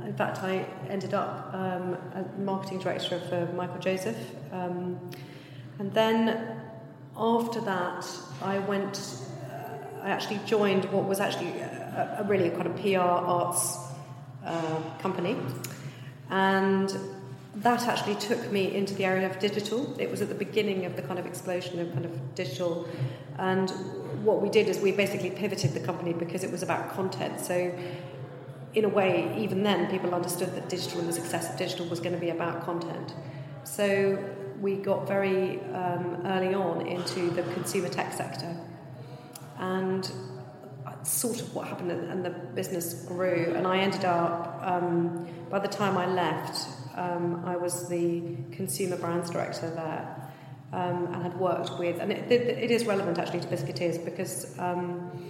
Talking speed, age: 160 wpm, 40-59